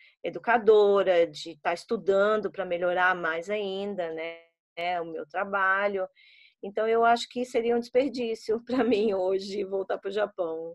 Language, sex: Portuguese, female